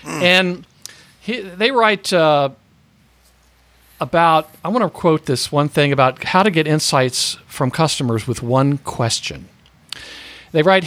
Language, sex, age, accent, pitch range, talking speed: English, male, 50-69, American, 130-185 Hz, 140 wpm